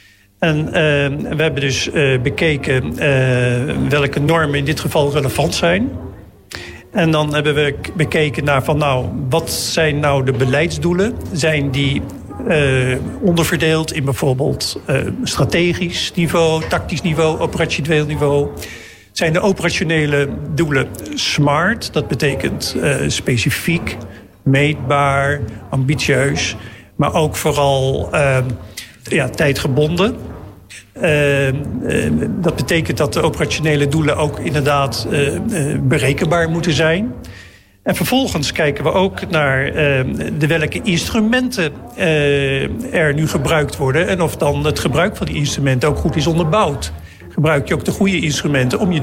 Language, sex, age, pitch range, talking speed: Dutch, male, 50-69, 140-165 Hz, 125 wpm